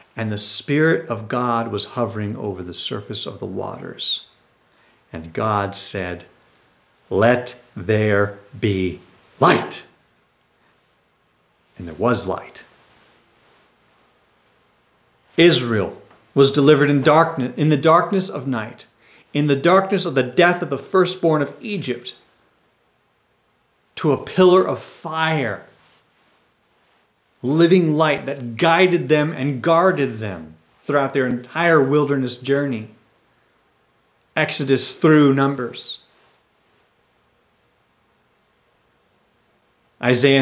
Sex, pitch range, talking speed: male, 115-165 Hz, 100 wpm